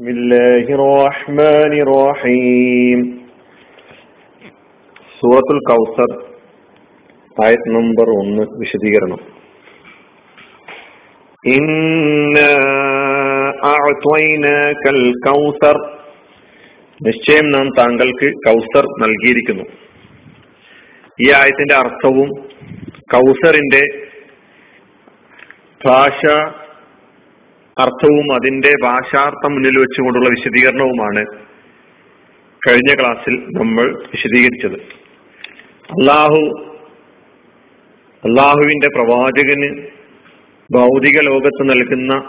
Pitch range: 125-145 Hz